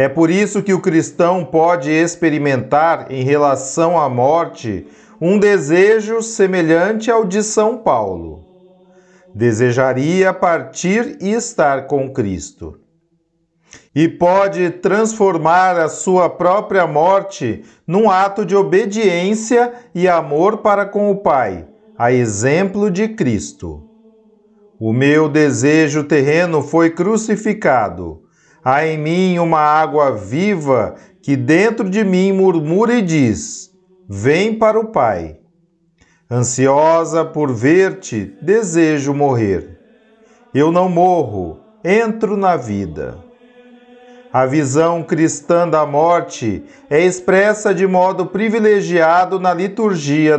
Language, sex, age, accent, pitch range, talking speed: Portuguese, male, 40-59, Brazilian, 150-205 Hz, 110 wpm